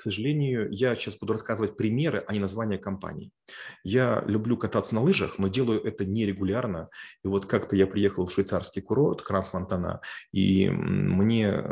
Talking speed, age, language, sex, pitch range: 160 wpm, 30-49, Russian, male, 100-115 Hz